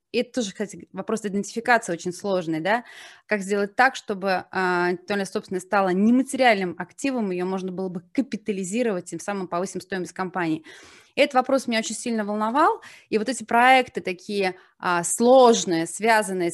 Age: 20-39